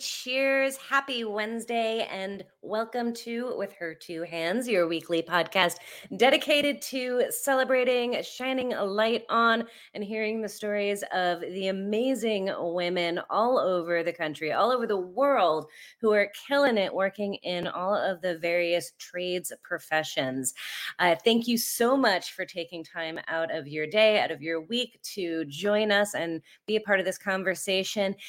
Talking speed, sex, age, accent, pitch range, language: 155 wpm, female, 30-49, American, 175-225 Hz, English